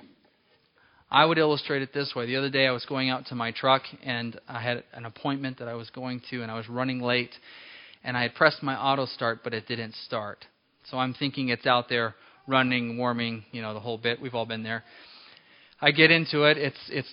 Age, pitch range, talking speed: 20-39, 120-155 Hz, 225 wpm